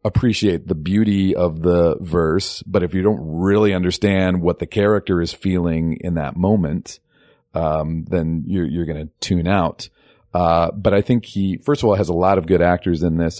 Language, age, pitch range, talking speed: English, 40-59, 80-100 Hz, 195 wpm